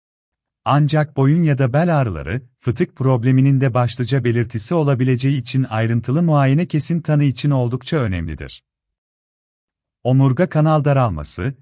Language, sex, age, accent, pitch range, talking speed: Turkish, male, 40-59, native, 120-150 Hz, 120 wpm